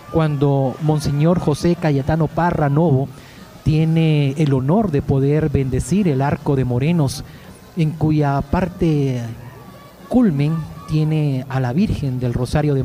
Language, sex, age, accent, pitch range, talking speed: Spanish, male, 40-59, Mexican, 135-175 Hz, 125 wpm